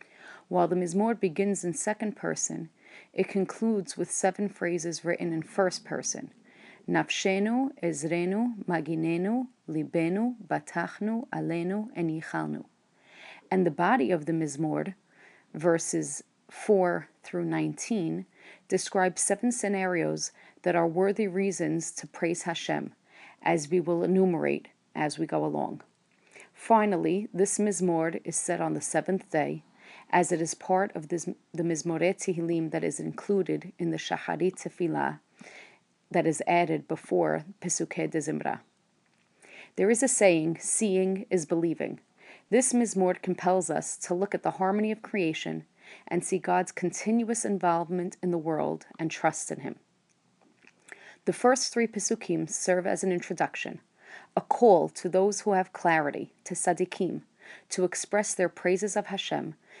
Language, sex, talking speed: English, female, 135 wpm